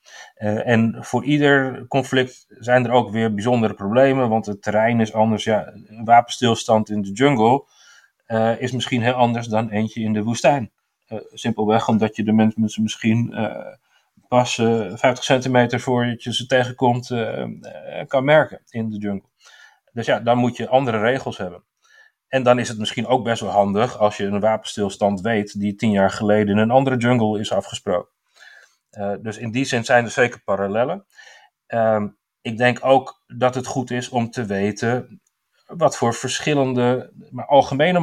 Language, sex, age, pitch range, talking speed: Dutch, male, 40-59, 110-130 Hz, 175 wpm